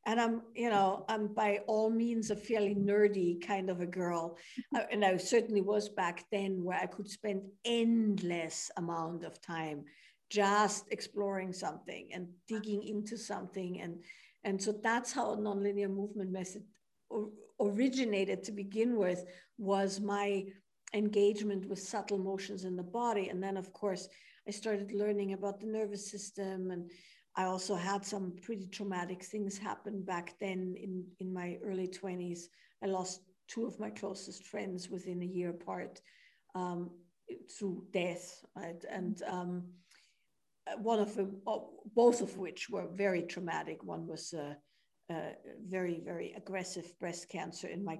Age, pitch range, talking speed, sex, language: 50-69, 180-210 Hz, 150 wpm, female, English